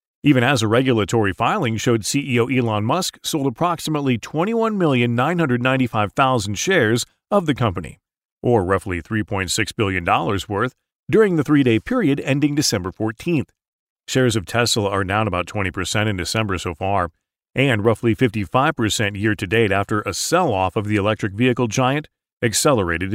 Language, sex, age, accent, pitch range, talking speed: English, male, 40-59, American, 105-145 Hz, 145 wpm